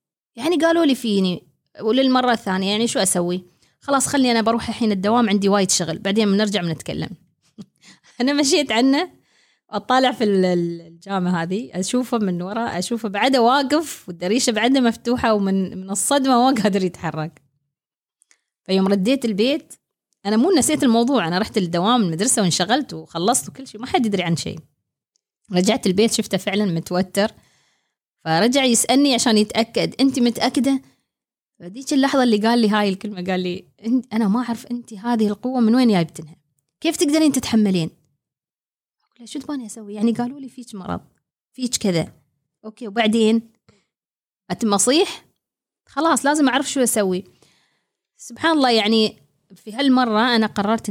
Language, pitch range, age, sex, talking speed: Arabic, 185-245 Hz, 20-39, female, 145 wpm